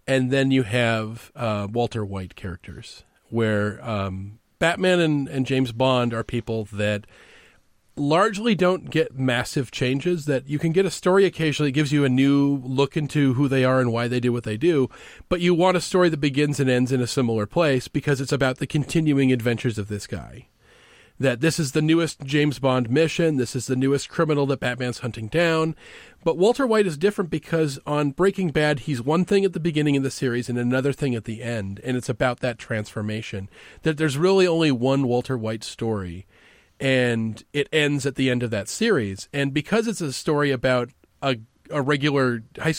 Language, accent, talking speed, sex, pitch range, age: English, American, 200 wpm, male, 120-160 Hz, 40-59